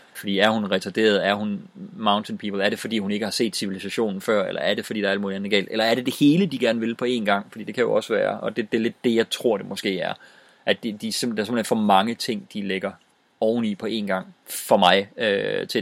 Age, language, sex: 30-49, English, male